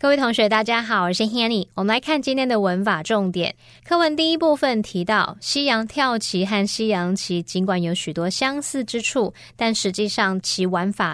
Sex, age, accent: female, 20-39, American